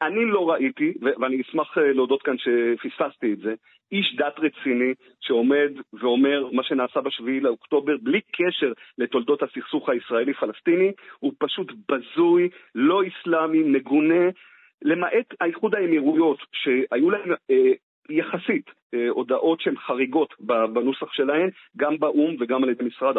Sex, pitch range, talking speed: male, 130-200 Hz, 120 wpm